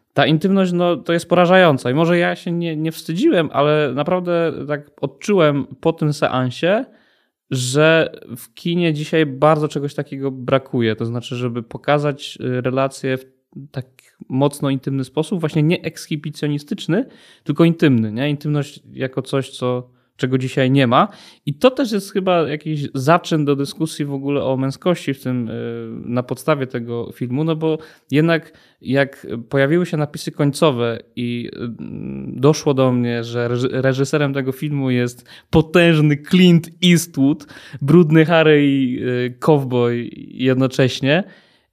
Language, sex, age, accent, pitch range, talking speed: Polish, male, 20-39, native, 125-155 Hz, 140 wpm